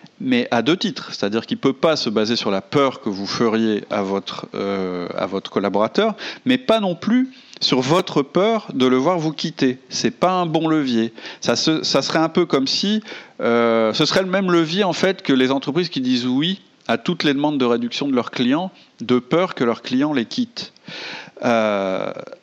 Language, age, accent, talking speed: French, 40-59, French, 215 wpm